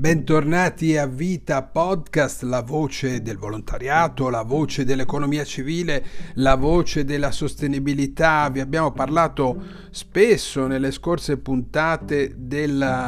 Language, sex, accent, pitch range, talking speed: Italian, male, native, 125-150 Hz, 110 wpm